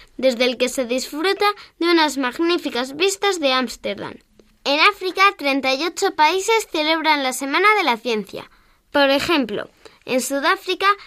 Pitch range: 250-340 Hz